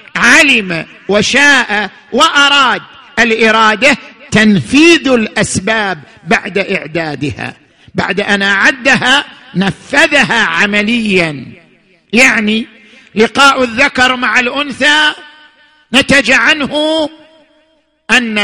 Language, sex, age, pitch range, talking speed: Arabic, male, 50-69, 175-260 Hz, 70 wpm